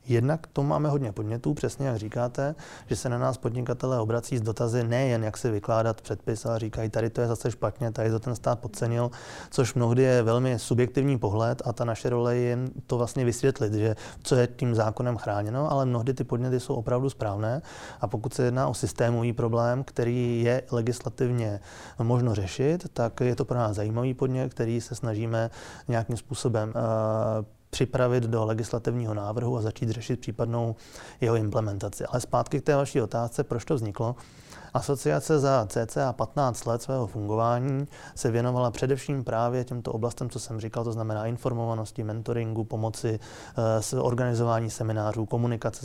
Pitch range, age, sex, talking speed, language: 115-130 Hz, 20-39, male, 170 wpm, Czech